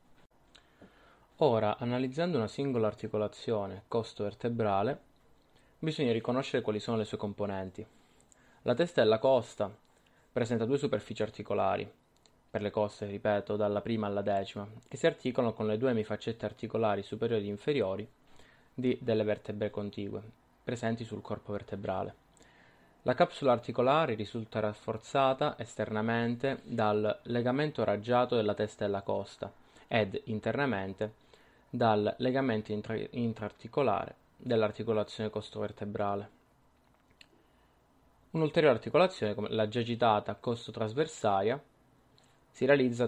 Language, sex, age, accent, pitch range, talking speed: Italian, male, 20-39, native, 105-125 Hz, 110 wpm